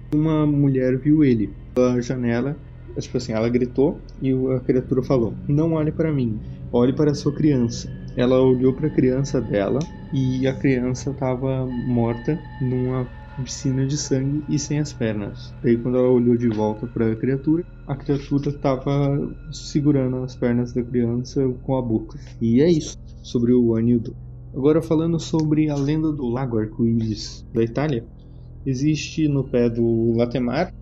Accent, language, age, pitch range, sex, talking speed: Brazilian, Portuguese, 20-39, 120-150 Hz, male, 165 wpm